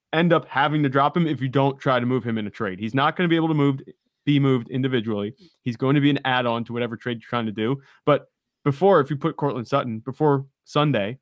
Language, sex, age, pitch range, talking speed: English, male, 30-49, 120-145 Hz, 260 wpm